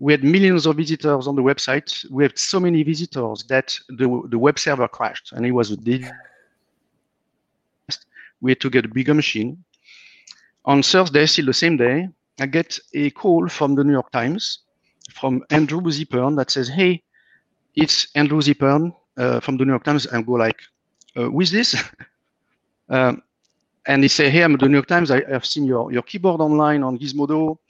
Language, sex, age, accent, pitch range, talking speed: English, male, 50-69, French, 120-150 Hz, 190 wpm